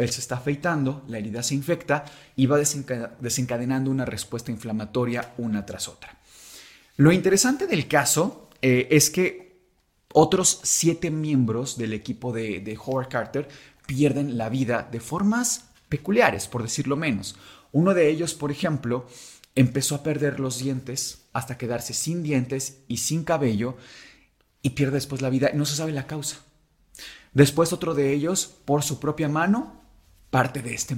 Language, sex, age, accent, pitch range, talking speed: Spanish, male, 30-49, Mexican, 125-160 Hz, 155 wpm